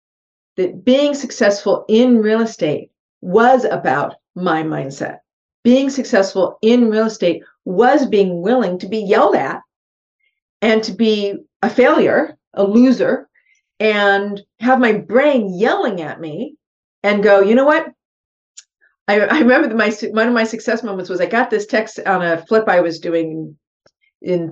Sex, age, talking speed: female, 50-69, 155 wpm